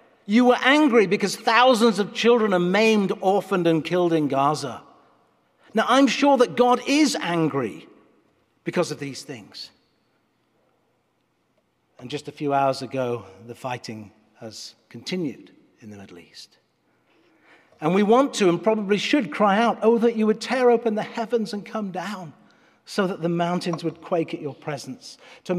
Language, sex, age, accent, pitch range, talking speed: English, male, 50-69, British, 160-240 Hz, 160 wpm